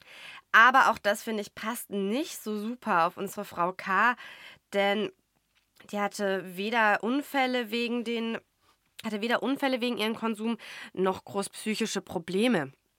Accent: German